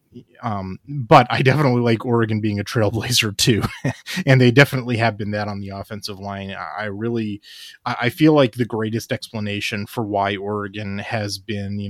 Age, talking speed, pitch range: 30-49, 170 wpm, 100-125 Hz